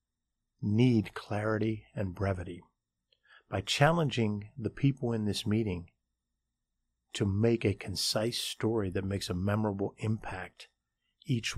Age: 50-69